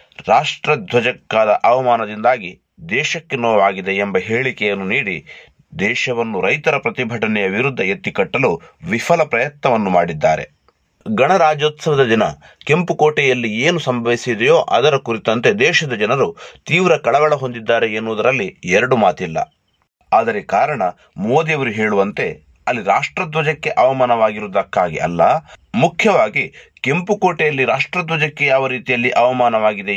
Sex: male